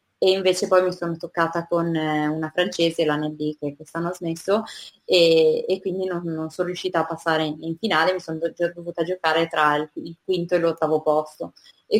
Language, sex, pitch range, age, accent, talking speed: Italian, female, 170-200 Hz, 20-39, native, 185 wpm